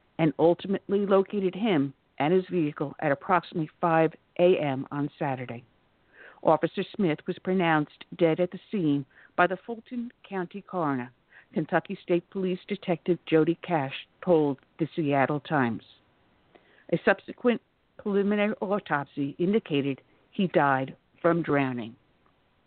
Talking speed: 120 wpm